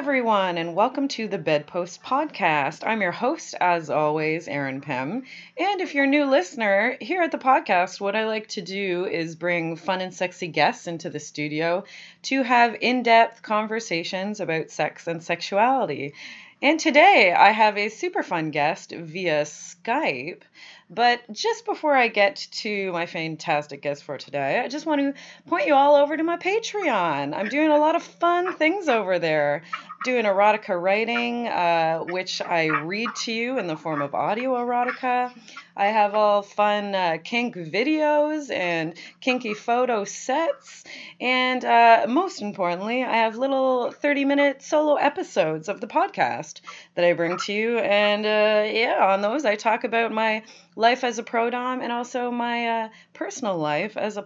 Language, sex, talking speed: English, female, 170 wpm